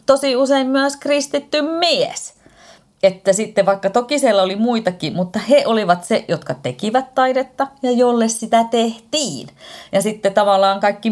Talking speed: 145 wpm